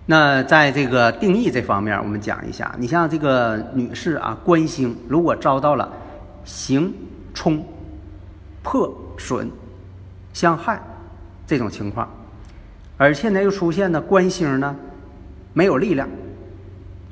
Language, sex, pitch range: Chinese, male, 100-155 Hz